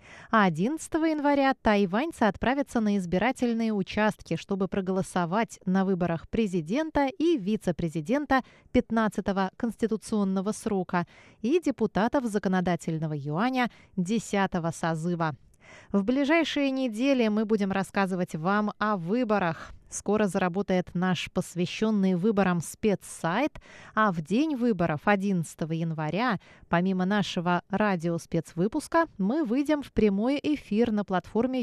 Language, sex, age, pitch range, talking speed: Russian, female, 20-39, 170-225 Hz, 100 wpm